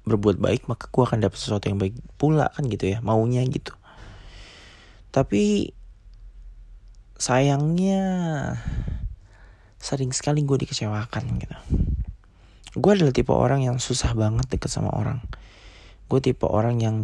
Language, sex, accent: Indonesian, male, native